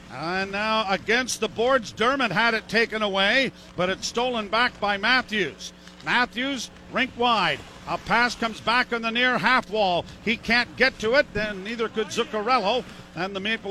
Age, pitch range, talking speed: 50-69, 190-250 Hz, 175 wpm